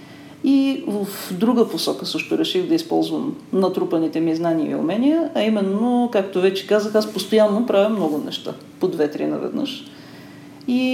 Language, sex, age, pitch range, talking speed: Bulgarian, female, 40-59, 170-230 Hz, 150 wpm